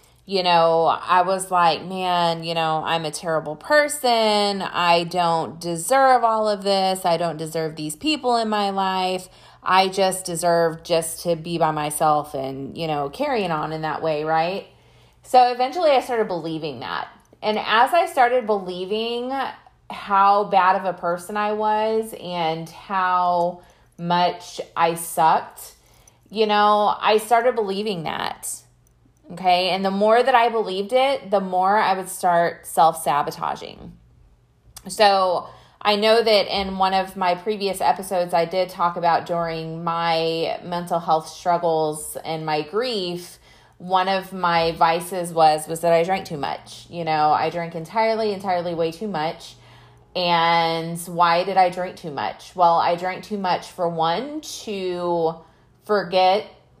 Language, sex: English, female